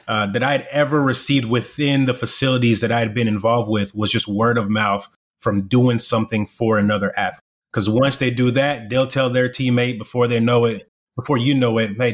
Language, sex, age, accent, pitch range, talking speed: English, male, 30-49, American, 110-135 Hz, 215 wpm